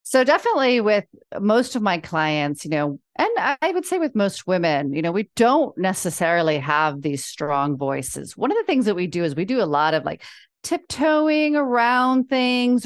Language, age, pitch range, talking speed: English, 40-59, 165-245 Hz, 195 wpm